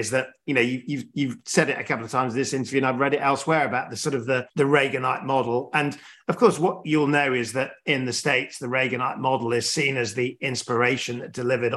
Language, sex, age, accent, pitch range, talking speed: English, male, 40-59, British, 125-150 Hz, 255 wpm